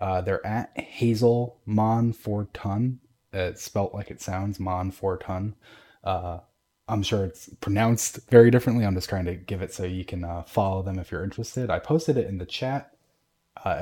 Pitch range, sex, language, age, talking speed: 95-115 Hz, male, English, 20-39, 180 wpm